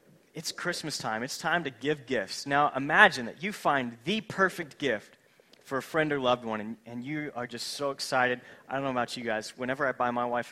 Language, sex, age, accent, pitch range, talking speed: English, male, 30-49, American, 140-190 Hz, 230 wpm